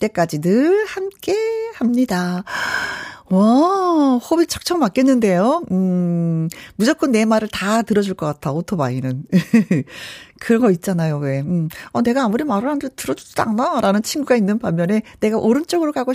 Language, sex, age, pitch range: Korean, female, 40-59, 195-270 Hz